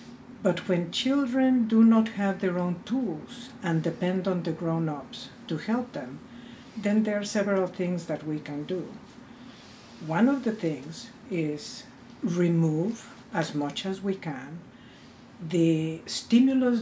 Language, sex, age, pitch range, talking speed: English, female, 50-69, 155-200 Hz, 140 wpm